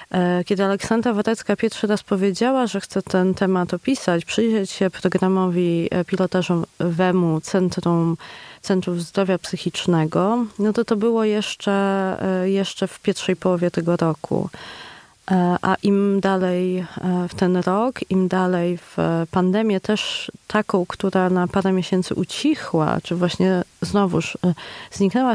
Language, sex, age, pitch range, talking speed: Polish, female, 30-49, 180-210 Hz, 120 wpm